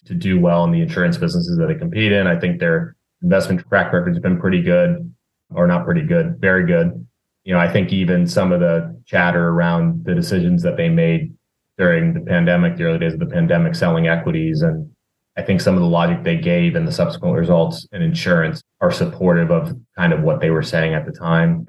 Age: 30-49